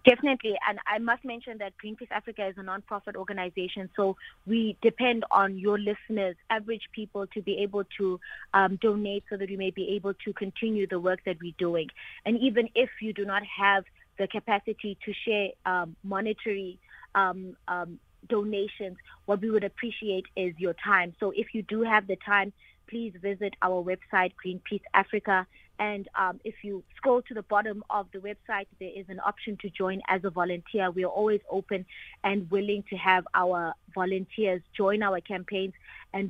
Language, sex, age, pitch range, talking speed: English, female, 20-39, 185-210 Hz, 180 wpm